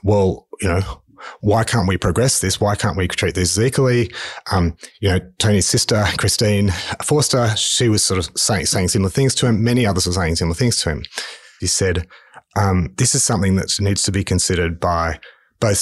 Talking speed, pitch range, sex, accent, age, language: 200 wpm, 85-115 Hz, male, Australian, 30-49, English